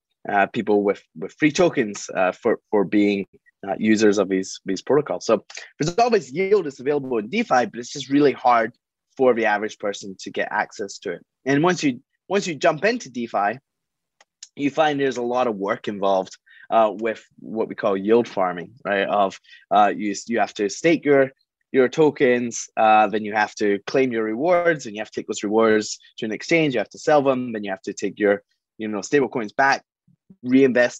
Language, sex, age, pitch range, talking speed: English, male, 20-39, 105-140 Hz, 205 wpm